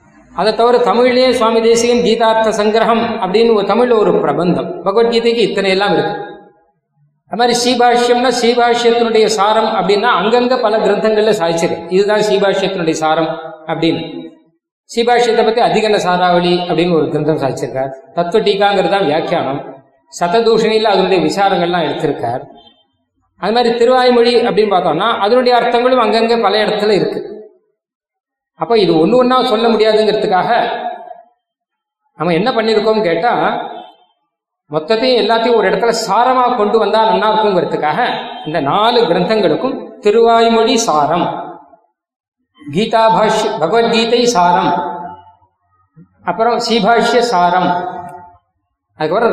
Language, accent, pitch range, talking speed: Tamil, native, 175-235 Hz, 105 wpm